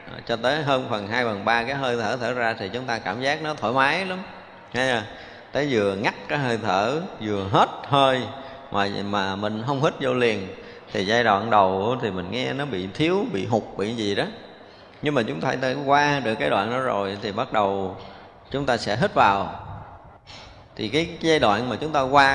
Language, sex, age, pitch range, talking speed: Vietnamese, male, 20-39, 105-140 Hz, 215 wpm